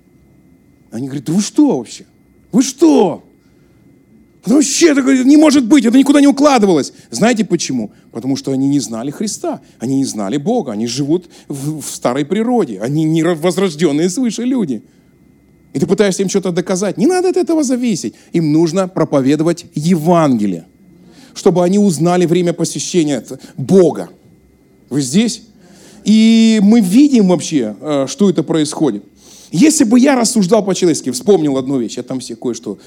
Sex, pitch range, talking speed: male, 140-215 Hz, 150 wpm